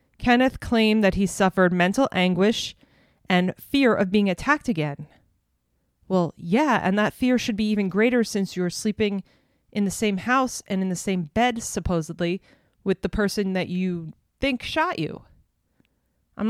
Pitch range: 175-215 Hz